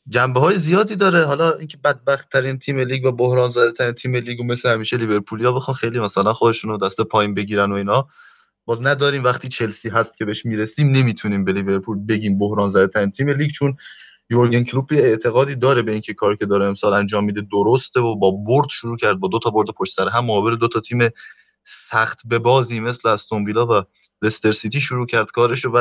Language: Persian